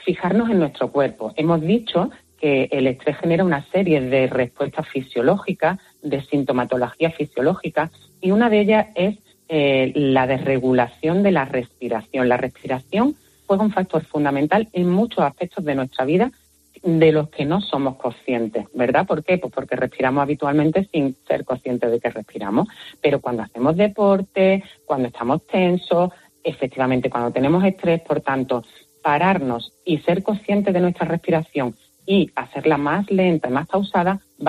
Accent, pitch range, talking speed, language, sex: Spanish, 130-190 Hz, 155 wpm, Spanish, female